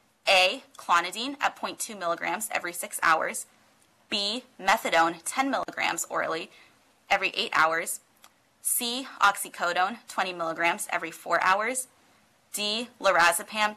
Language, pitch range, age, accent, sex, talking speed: English, 180-235 Hz, 20-39, American, female, 110 wpm